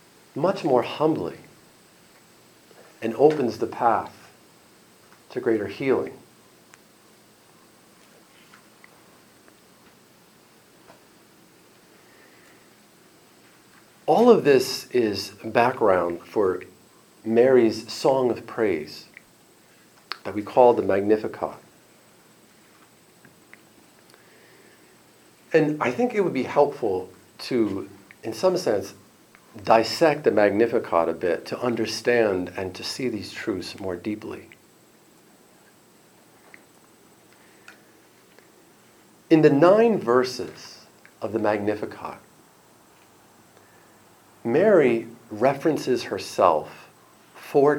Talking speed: 75 wpm